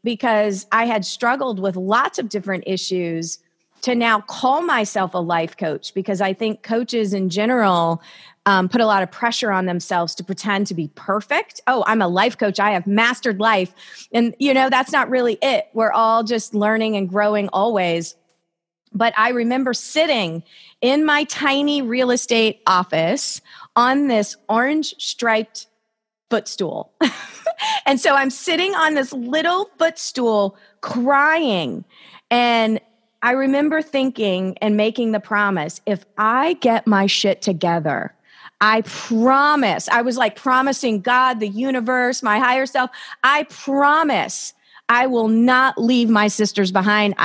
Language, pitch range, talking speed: English, 195-255 Hz, 150 wpm